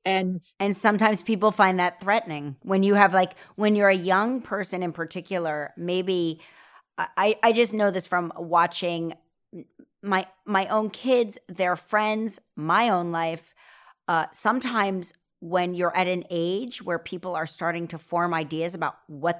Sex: female